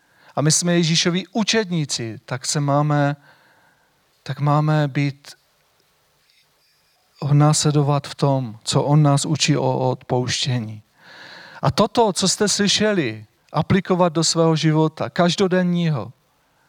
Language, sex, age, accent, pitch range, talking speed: Czech, male, 40-59, native, 145-185 Hz, 110 wpm